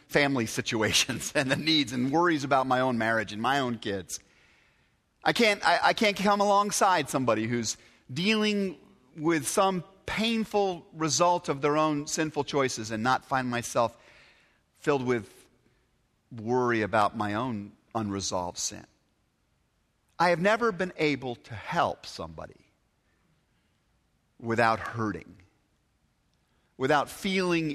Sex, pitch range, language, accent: male, 110-175 Hz, English, American